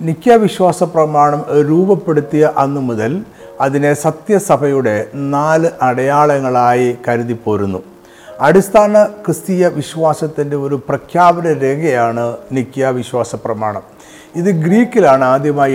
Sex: male